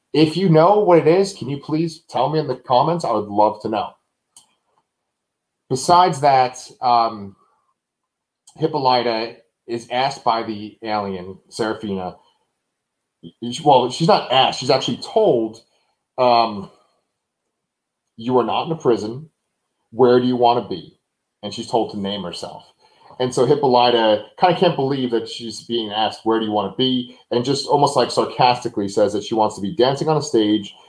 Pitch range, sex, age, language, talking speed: 110-150 Hz, male, 30-49, English, 165 wpm